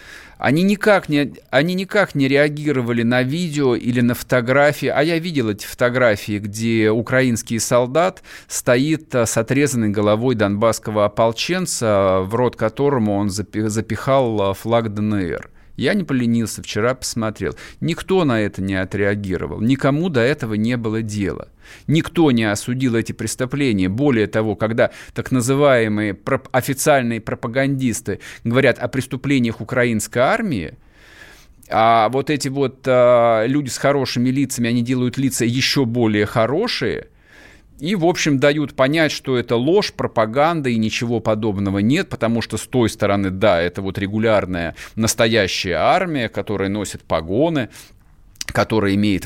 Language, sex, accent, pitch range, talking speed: Russian, male, native, 105-135 Hz, 130 wpm